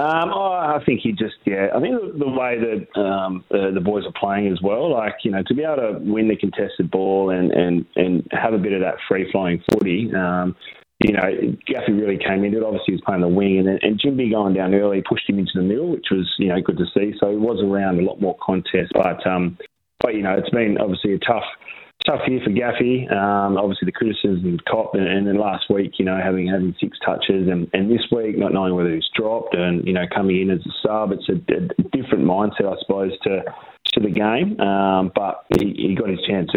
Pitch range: 90-100 Hz